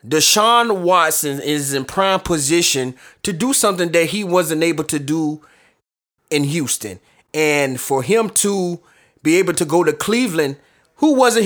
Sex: male